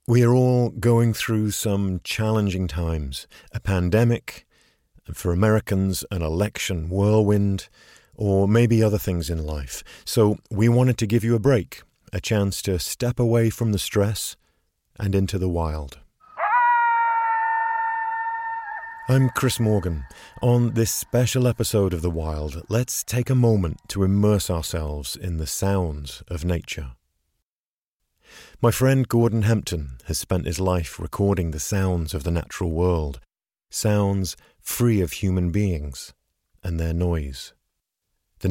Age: 40-59